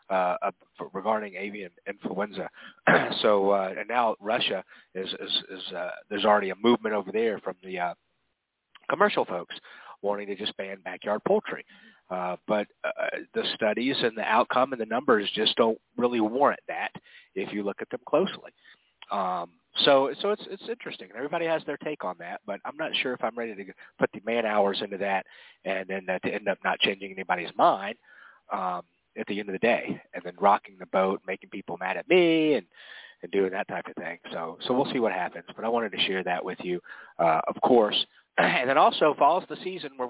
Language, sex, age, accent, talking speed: English, male, 40-59, American, 205 wpm